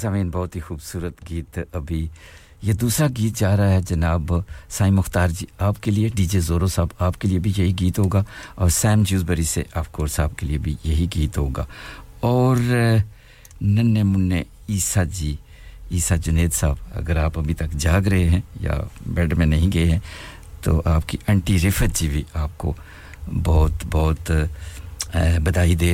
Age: 60-79